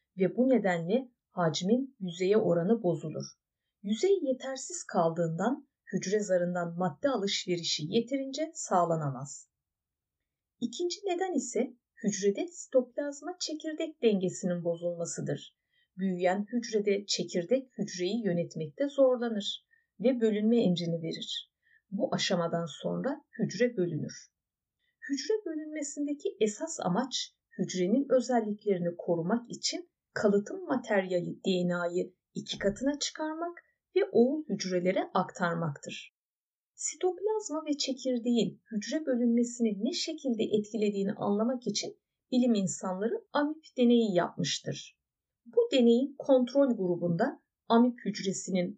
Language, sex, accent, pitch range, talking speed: Turkish, female, native, 180-280 Hz, 95 wpm